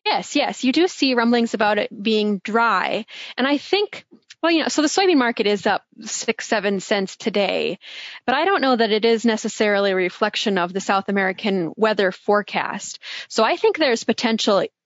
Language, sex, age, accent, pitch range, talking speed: English, female, 20-39, American, 195-235 Hz, 190 wpm